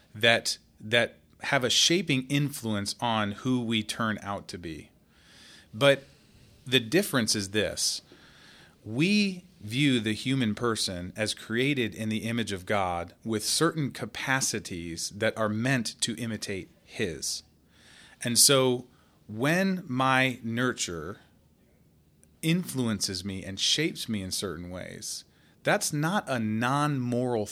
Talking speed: 120 wpm